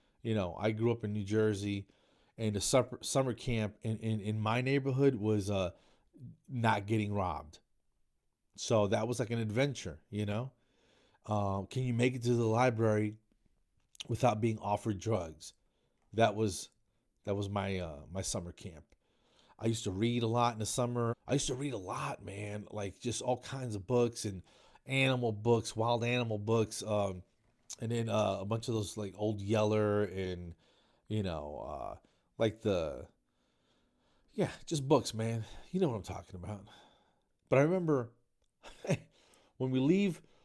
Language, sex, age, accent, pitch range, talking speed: English, male, 40-59, American, 100-120 Hz, 170 wpm